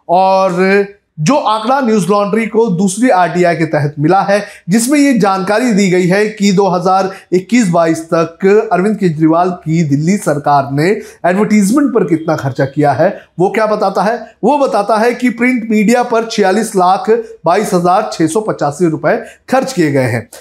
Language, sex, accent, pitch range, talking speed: Hindi, male, native, 155-210 Hz, 155 wpm